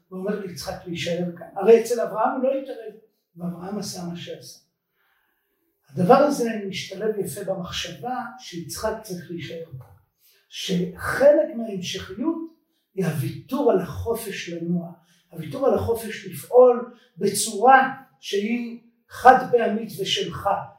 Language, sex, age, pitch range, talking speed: Hebrew, male, 50-69, 180-255 Hz, 115 wpm